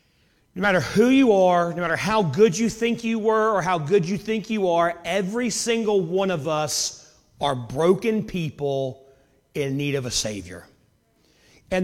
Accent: American